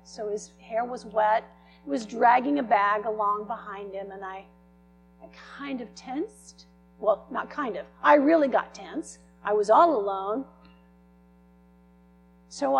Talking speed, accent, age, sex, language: 150 wpm, American, 50-69, female, English